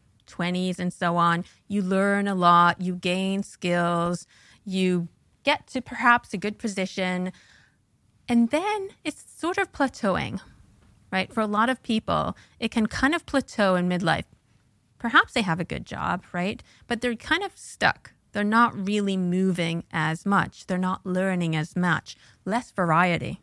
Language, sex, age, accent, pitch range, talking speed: English, female, 30-49, American, 180-225 Hz, 160 wpm